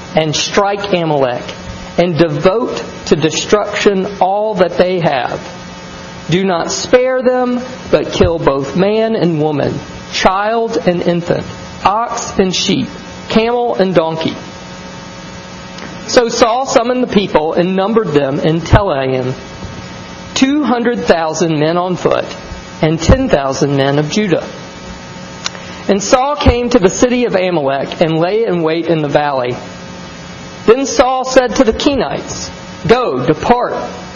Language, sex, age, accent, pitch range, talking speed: English, male, 40-59, American, 155-230 Hz, 125 wpm